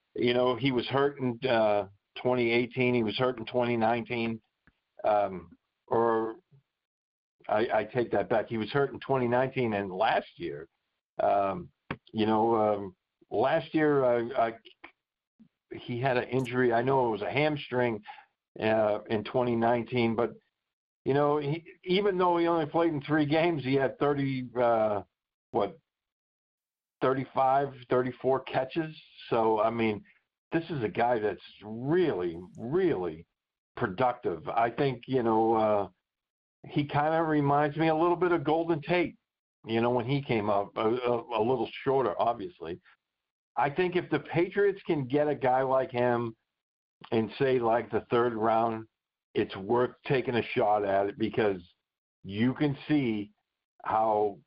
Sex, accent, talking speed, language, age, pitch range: male, American, 150 wpm, English, 50-69, 110-145 Hz